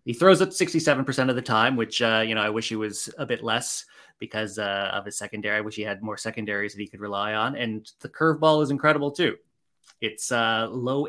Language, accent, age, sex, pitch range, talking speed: English, American, 20-39, male, 110-135 Hz, 235 wpm